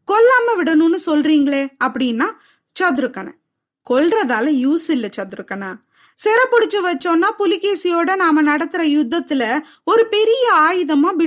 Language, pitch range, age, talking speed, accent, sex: Tamil, 275-375 Hz, 20-39, 55 wpm, native, female